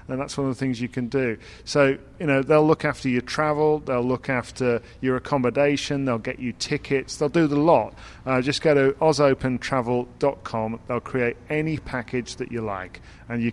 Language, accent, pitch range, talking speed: English, British, 115-145 Hz, 195 wpm